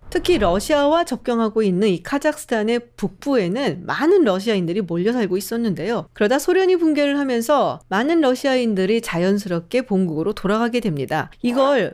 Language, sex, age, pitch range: Korean, female, 40-59, 195-275 Hz